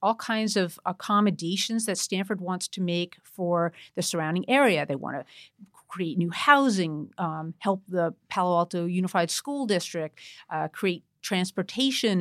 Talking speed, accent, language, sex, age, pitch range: 145 wpm, American, English, female, 50-69, 170-210 Hz